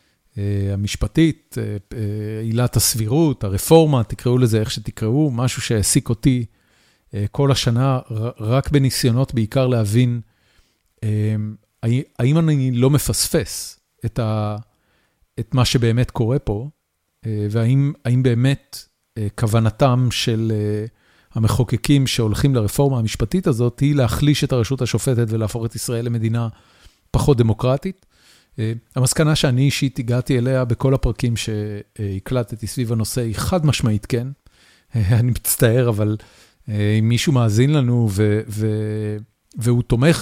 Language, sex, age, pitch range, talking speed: Hebrew, male, 40-59, 110-130 Hz, 120 wpm